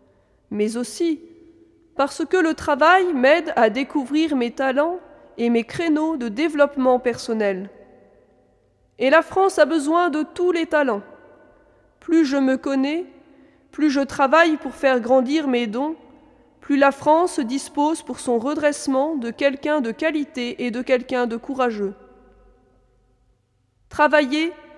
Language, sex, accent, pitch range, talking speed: French, female, French, 240-305 Hz, 135 wpm